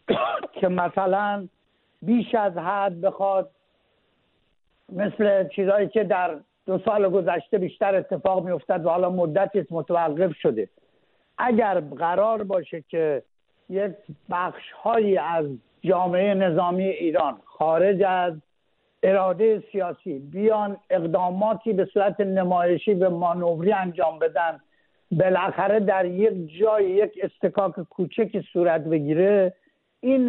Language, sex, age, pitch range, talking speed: English, male, 60-79, 180-210 Hz, 110 wpm